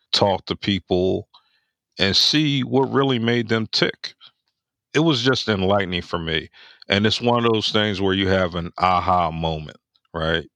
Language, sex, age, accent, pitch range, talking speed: English, male, 50-69, American, 90-110 Hz, 165 wpm